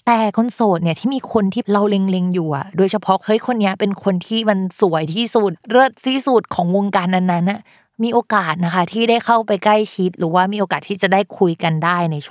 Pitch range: 175-220 Hz